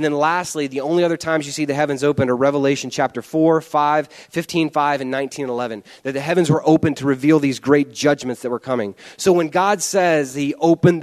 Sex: male